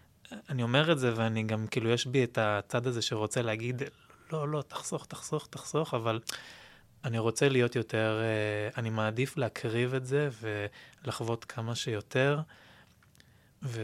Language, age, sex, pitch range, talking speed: Hebrew, 20-39, male, 110-130 Hz, 145 wpm